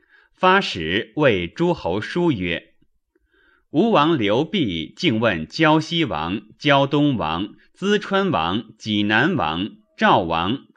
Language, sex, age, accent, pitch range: Chinese, male, 30-49, native, 120-190 Hz